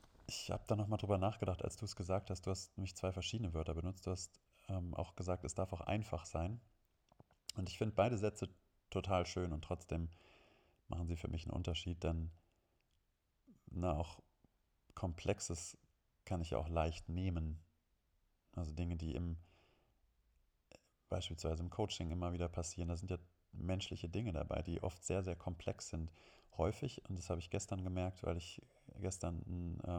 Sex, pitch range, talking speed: male, 85-95 Hz, 170 wpm